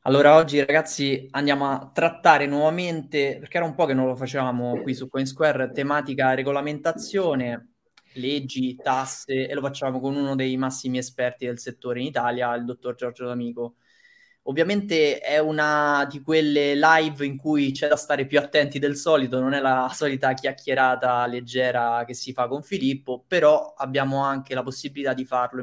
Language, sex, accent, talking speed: Italian, male, native, 165 wpm